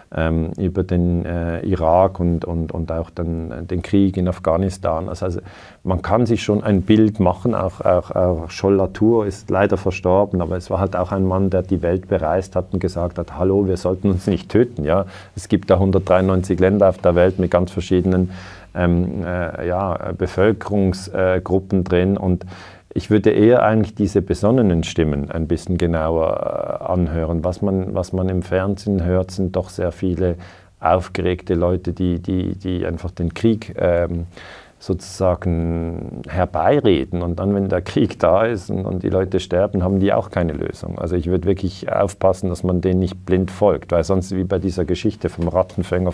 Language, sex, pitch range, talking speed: German, male, 90-95 Hz, 180 wpm